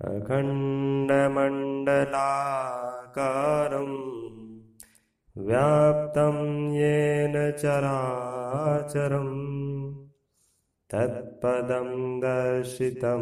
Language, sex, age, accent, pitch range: Hindi, male, 30-49, native, 125-160 Hz